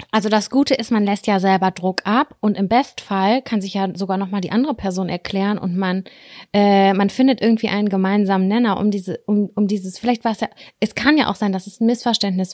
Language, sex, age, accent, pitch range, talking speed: German, female, 20-39, German, 200-245 Hz, 235 wpm